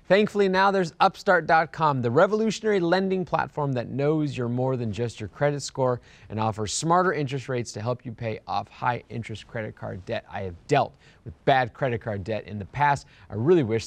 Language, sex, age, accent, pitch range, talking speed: English, male, 30-49, American, 115-170 Hz, 200 wpm